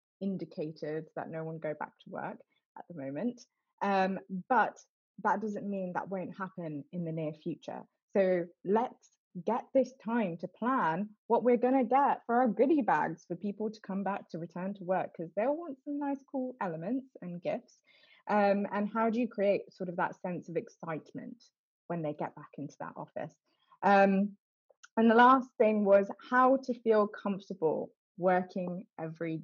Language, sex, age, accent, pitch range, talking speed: English, female, 20-39, British, 175-235 Hz, 175 wpm